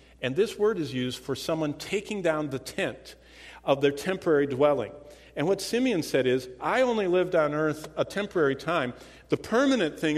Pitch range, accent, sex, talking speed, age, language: 110-155 Hz, American, male, 185 wpm, 50-69, English